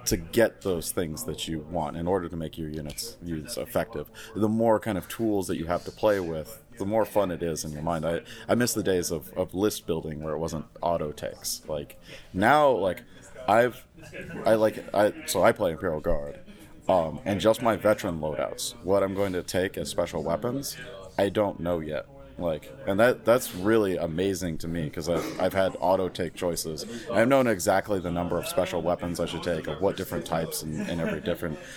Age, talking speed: 30-49, 215 wpm